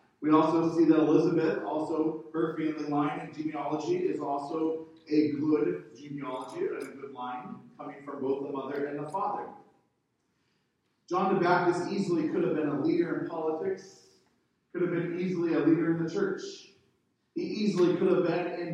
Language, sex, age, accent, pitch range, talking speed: English, male, 40-59, American, 145-175 Hz, 175 wpm